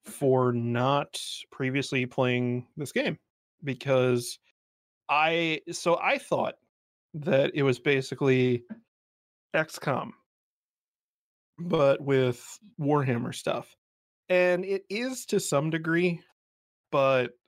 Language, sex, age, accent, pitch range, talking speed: English, male, 30-49, American, 125-150 Hz, 95 wpm